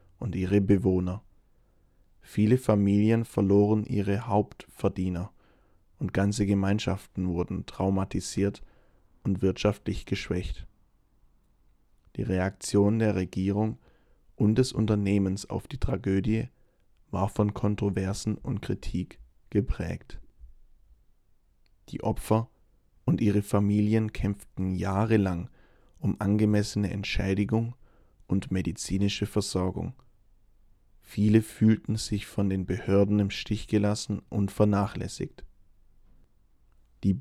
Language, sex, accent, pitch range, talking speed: English, male, German, 95-105 Hz, 90 wpm